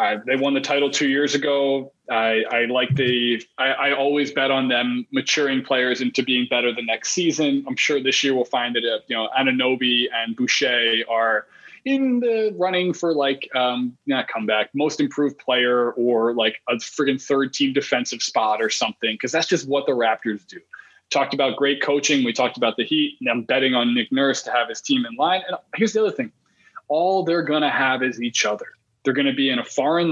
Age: 20-39